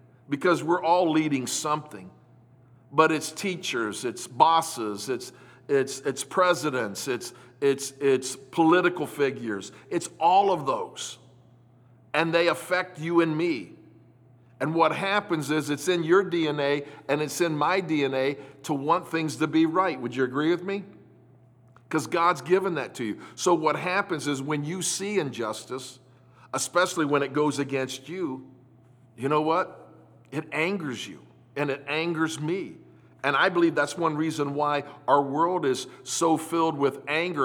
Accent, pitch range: American, 130-165 Hz